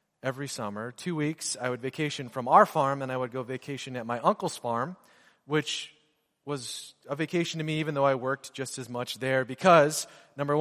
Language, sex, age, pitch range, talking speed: English, male, 30-49, 120-155 Hz, 200 wpm